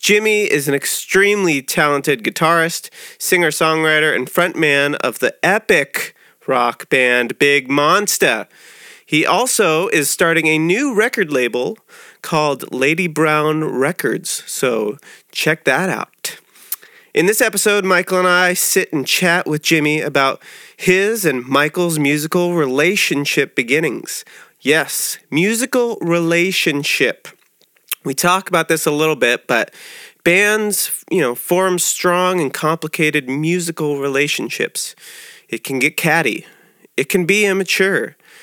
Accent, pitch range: American, 150-190 Hz